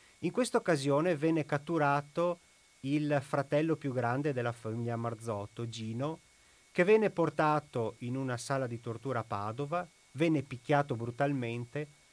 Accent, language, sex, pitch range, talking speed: native, Italian, male, 115-165 Hz, 130 wpm